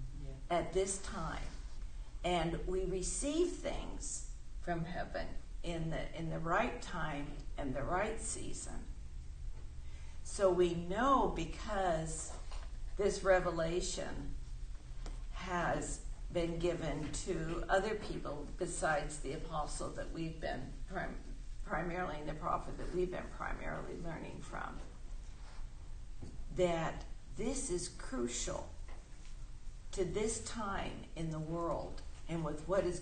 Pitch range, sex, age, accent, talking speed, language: 110-185 Hz, female, 50-69, American, 110 wpm, English